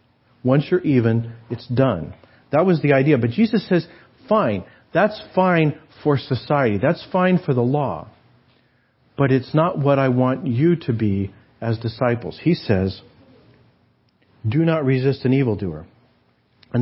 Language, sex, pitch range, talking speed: English, male, 115-150 Hz, 145 wpm